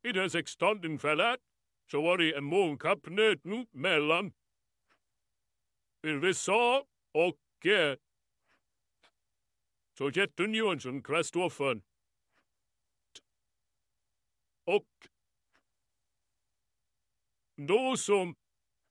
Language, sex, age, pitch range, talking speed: Swedish, male, 60-79, 115-175 Hz, 75 wpm